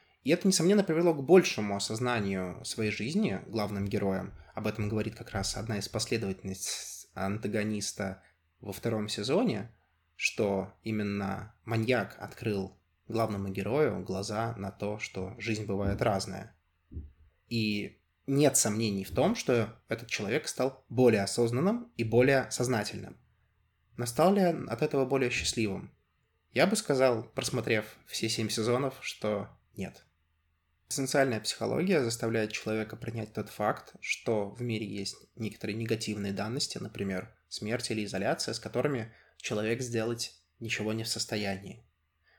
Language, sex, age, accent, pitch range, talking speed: Russian, male, 20-39, native, 100-120 Hz, 130 wpm